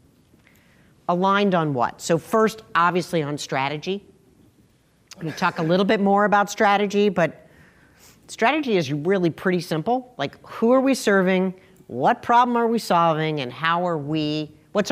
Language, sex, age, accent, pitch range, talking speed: English, female, 50-69, American, 145-195 Hz, 150 wpm